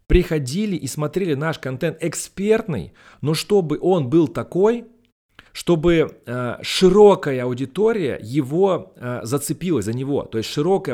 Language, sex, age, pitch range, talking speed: Russian, male, 30-49, 125-175 Hz, 125 wpm